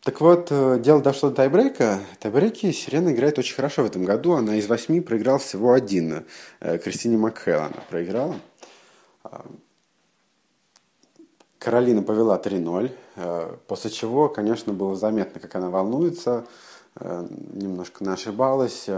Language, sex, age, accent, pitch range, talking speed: Russian, male, 20-39, native, 95-125 Hz, 115 wpm